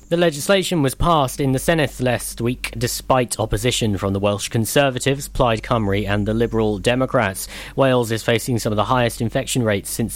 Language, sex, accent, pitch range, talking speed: English, male, British, 110-150 Hz, 185 wpm